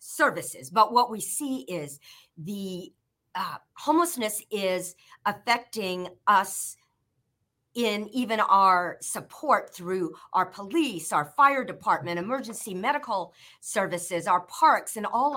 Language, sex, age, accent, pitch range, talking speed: English, female, 50-69, American, 170-235 Hz, 115 wpm